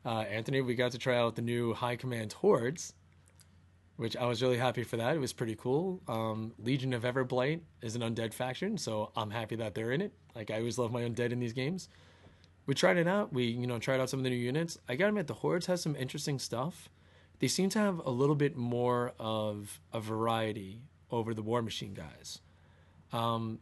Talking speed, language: 220 wpm, English